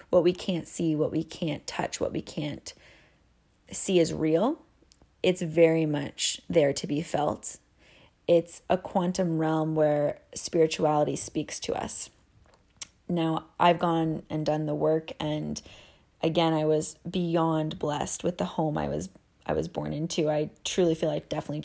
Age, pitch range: 30-49, 155-195 Hz